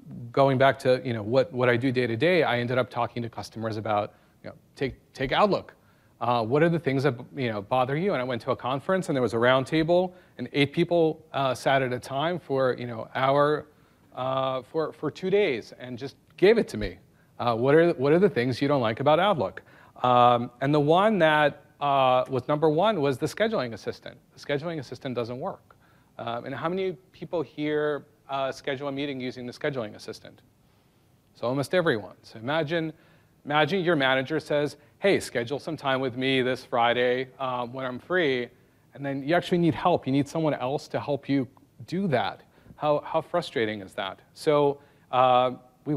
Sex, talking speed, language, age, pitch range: male, 205 wpm, English, 40-59, 125-150 Hz